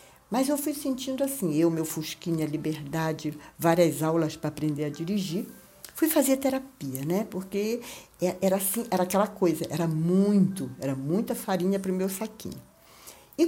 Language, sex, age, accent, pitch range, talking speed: Portuguese, female, 60-79, Brazilian, 160-205 Hz, 155 wpm